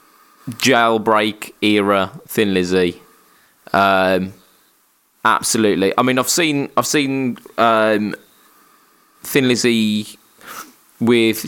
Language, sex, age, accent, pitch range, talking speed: English, male, 20-39, British, 100-115 Hz, 85 wpm